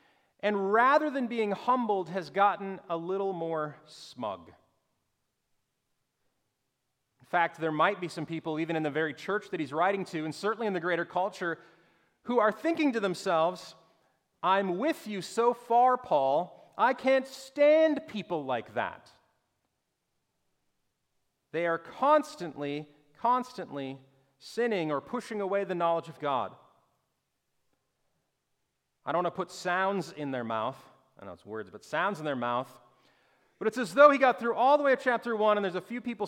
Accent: American